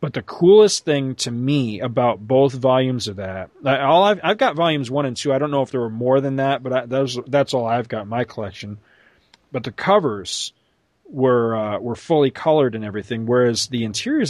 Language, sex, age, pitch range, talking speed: English, male, 40-59, 115-160 Hz, 215 wpm